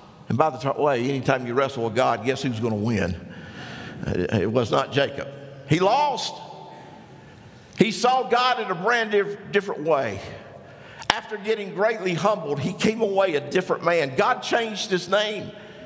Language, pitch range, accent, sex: English, 155-220 Hz, American, male